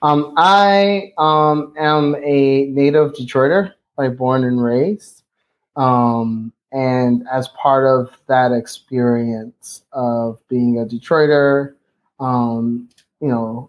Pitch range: 120-145 Hz